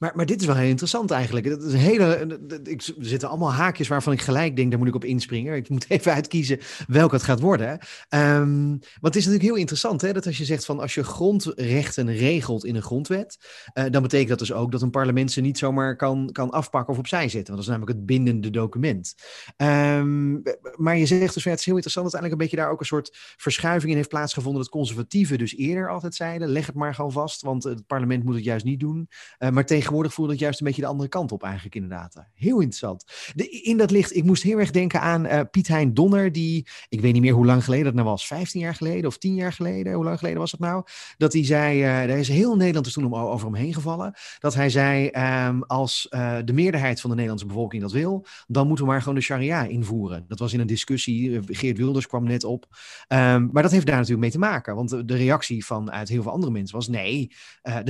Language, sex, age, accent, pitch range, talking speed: Dutch, male, 30-49, Dutch, 125-160 Hz, 250 wpm